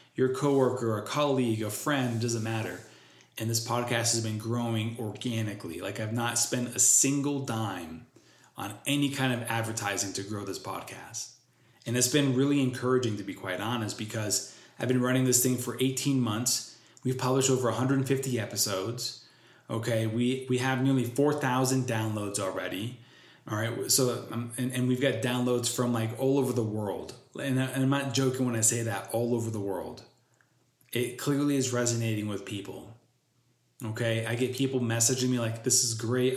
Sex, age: male, 20-39